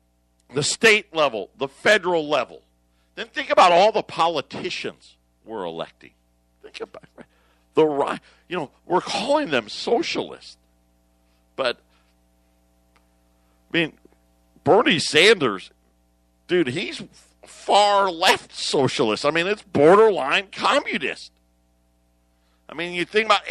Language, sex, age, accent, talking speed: English, male, 50-69, American, 110 wpm